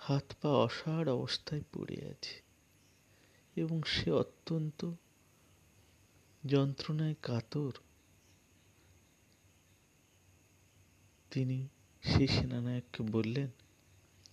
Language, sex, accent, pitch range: Bengali, male, native, 95-145 Hz